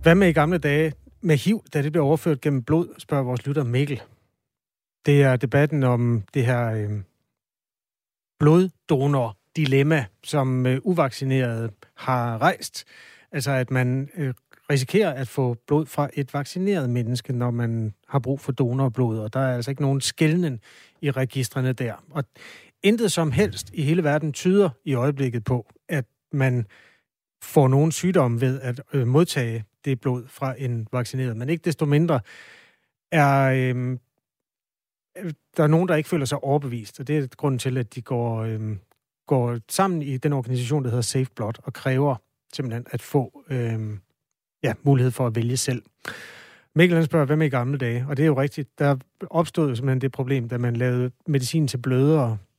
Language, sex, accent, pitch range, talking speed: Danish, male, native, 125-150 Hz, 165 wpm